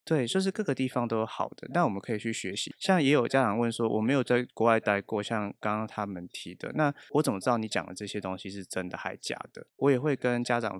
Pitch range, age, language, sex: 100-125 Hz, 20-39, Chinese, male